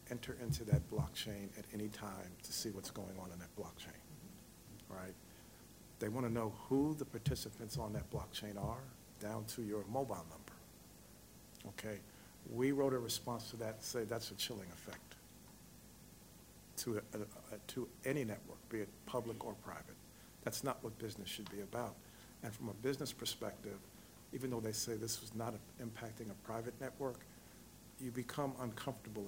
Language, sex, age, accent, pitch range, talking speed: English, male, 50-69, American, 100-120 Hz, 170 wpm